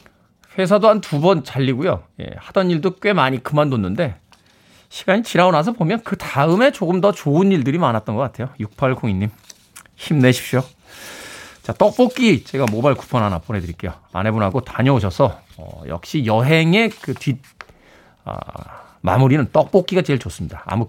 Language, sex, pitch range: Korean, male, 120-180 Hz